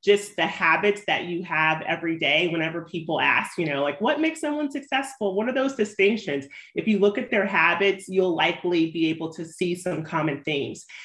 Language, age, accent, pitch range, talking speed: English, 30-49, American, 160-195 Hz, 200 wpm